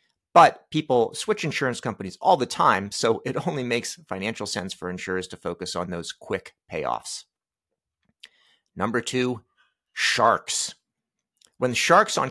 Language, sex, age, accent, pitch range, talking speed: English, male, 40-59, American, 105-130 Hz, 135 wpm